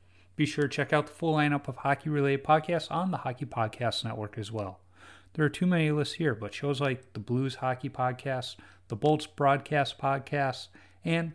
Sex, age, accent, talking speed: male, 30-49, American, 190 wpm